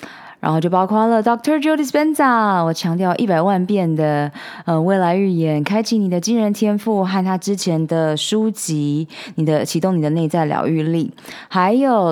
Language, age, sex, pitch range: Chinese, 20-39, female, 165-225 Hz